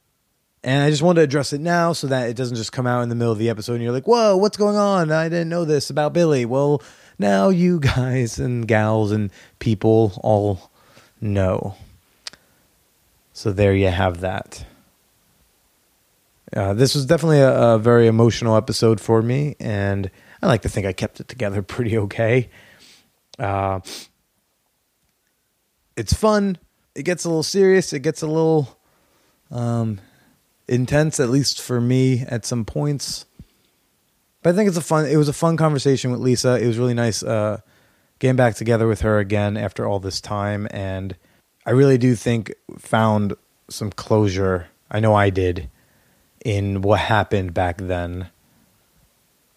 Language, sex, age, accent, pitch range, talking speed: English, male, 20-39, American, 105-140 Hz, 165 wpm